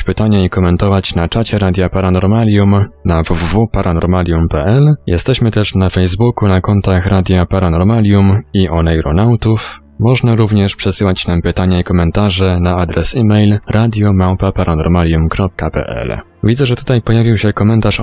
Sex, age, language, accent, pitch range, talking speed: male, 20-39, Polish, native, 90-105 Hz, 125 wpm